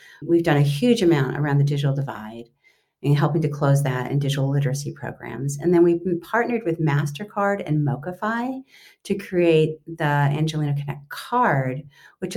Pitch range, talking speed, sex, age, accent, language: 140-170 Hz, 160 wpm, female, 50-69, American, English